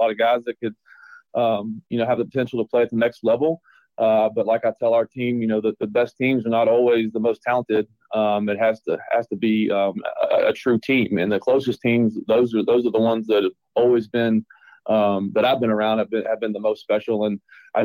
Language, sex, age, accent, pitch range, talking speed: English, male, 30-49, American, 110-125 Hz, 255 wpm